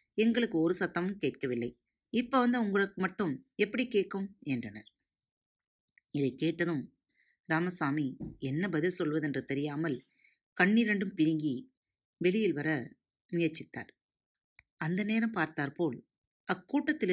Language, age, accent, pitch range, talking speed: Tamil, 30-49, native, 140-195 Hz, 95 wpm